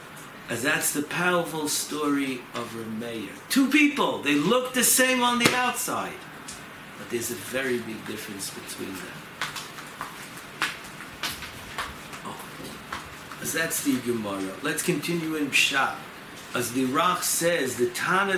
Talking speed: 130 wpm